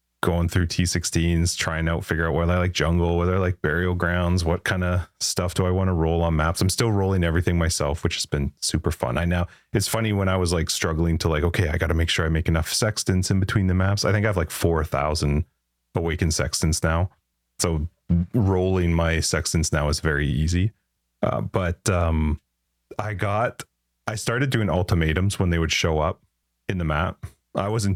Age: 30-49